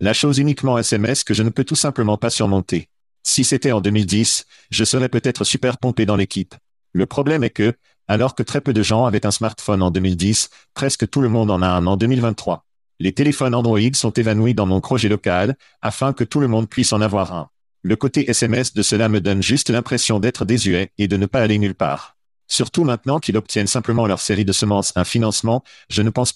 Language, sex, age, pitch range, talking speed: French, male, 50-69, 100-125 Hz, 220 wpm